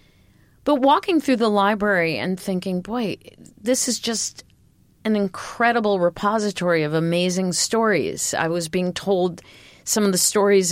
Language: English